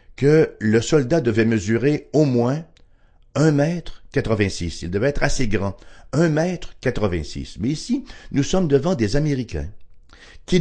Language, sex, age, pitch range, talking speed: English, male, 60-79, 95-145 Hz, 145 wpm